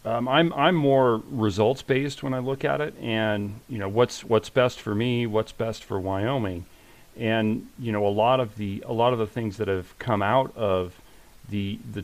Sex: male